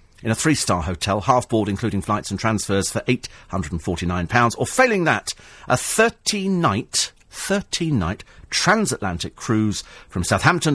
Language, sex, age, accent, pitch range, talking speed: English, male, 40-59, British, 100-135 Hz, 165 wpm